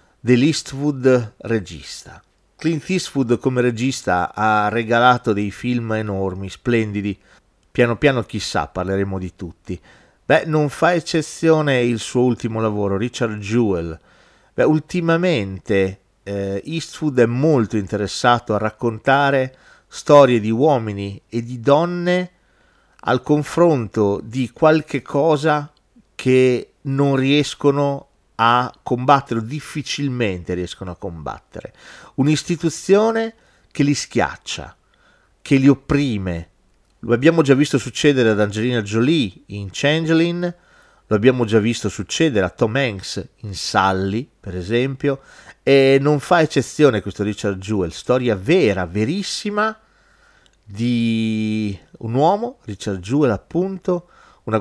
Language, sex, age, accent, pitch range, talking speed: Italian, male, 40-59, native, 105-150 Hz, 115 wpm